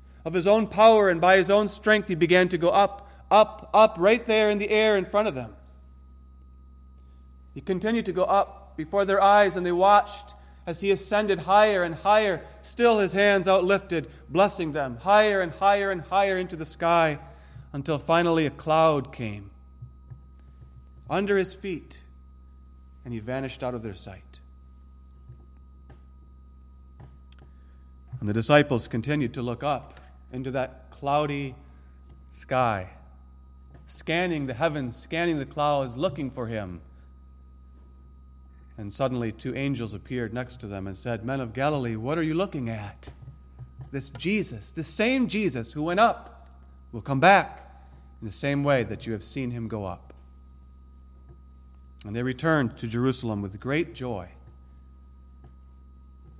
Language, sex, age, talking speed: English, male, 30-49, 150 wpm